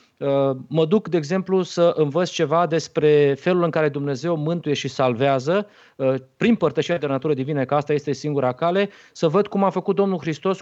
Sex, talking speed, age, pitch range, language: male, 180 wpm, 30-49, 130-170 Hz, Romanian